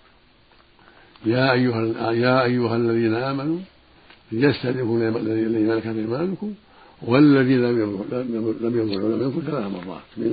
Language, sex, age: Arabic, male, 60-79